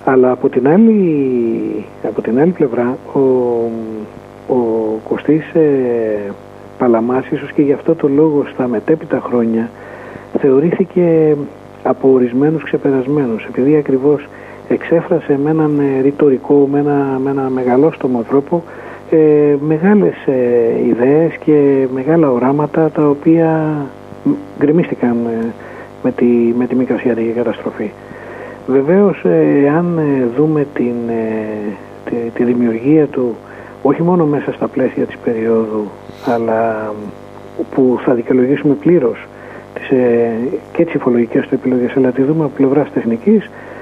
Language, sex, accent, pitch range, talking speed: Greek, male, native, 120-150 Hz, 125 wpm